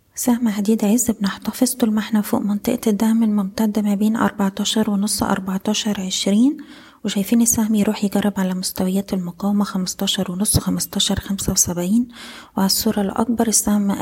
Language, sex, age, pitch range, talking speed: Arabic, female, 20-39, 195-220 Hz, 115 wpm